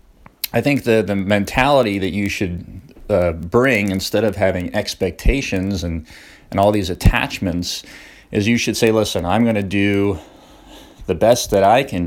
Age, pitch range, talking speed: 30-49, 90-105 Hz, 165 wpm